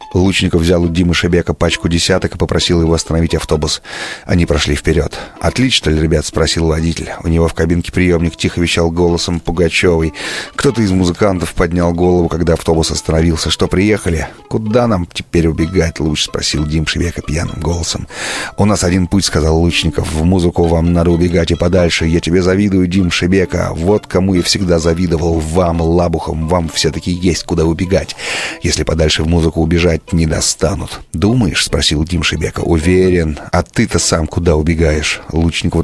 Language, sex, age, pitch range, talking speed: Russian, male, 30-49, 80-90 Hz, 160 wpm